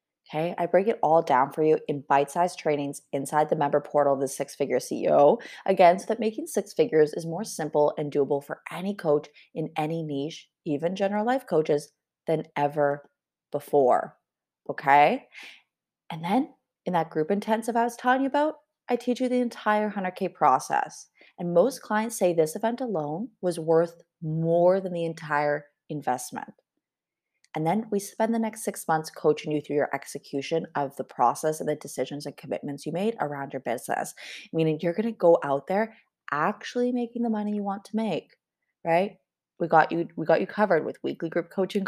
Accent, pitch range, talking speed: American, 150-205 Hz, 180 wpm